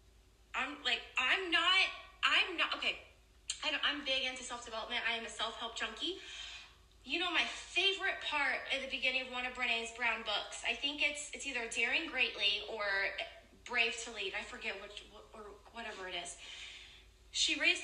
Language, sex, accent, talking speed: English, female, American, 175 wpm